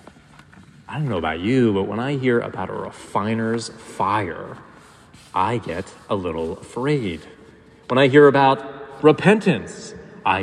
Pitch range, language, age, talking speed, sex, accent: 115-150 Hz, English, 30-49, 140 wpm, male, American